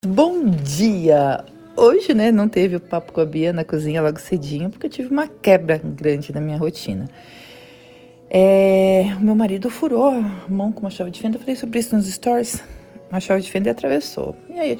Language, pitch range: Portuguese, 180-245 Hz